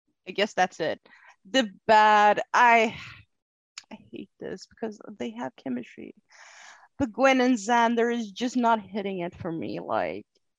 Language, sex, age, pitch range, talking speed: English, female, 20-39, 170-230 Hz, 145 wpm